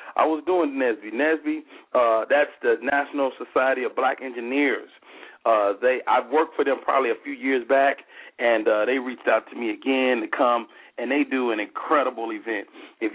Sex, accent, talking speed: male, American, 185 wpm